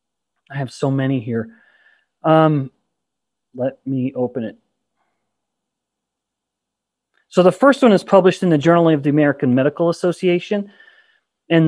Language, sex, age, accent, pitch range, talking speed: English, male, 30-49, American, 145-190 Hz, 130 wpm